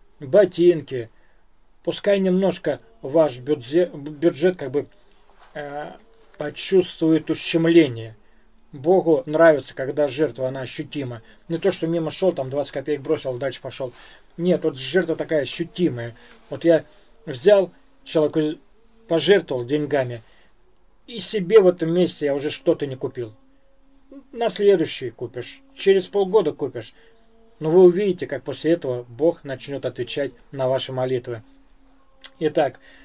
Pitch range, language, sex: 135-180 Hz, Russian, male